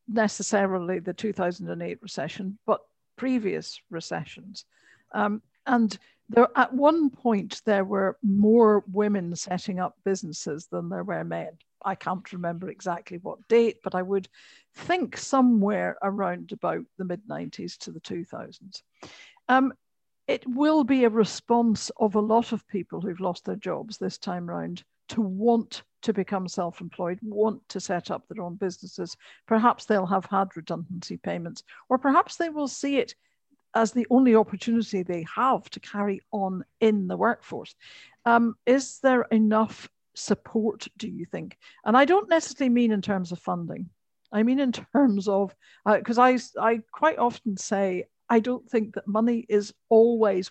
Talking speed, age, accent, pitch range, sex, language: 160 wpm, 60-79, British, 190-235 Hz, female, English